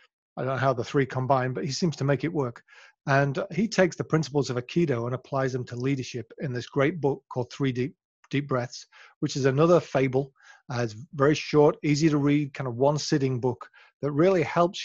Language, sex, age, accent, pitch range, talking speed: English, male, 40-59, British, 125-150 Hz, 220 wpm